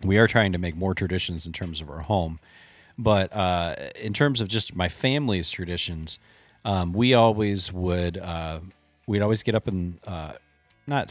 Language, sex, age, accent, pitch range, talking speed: English, male, 30-49, American, 85-110 Hz, 180 wpm